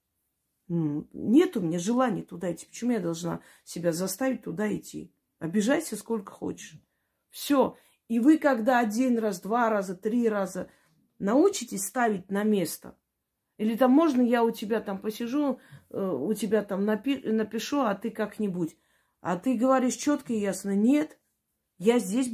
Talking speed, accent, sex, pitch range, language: 145 wpm, native, female, 190-240 Hz, Russian